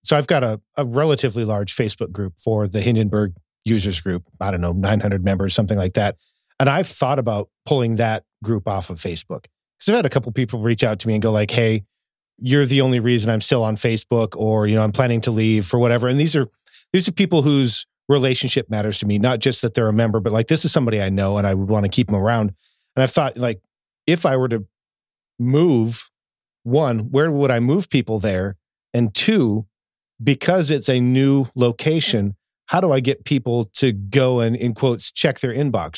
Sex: male